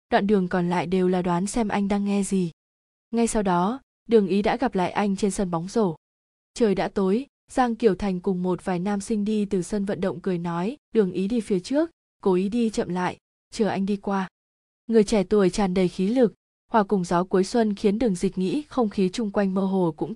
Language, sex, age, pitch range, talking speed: Vietnamese, female, 20-39, 185-225 Hz, 240 wpm